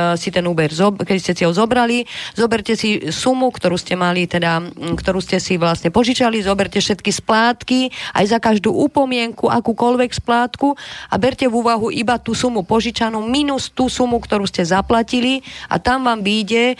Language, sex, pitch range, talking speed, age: Slovak, female, 190-235 Hz, 165 wpm, 30-49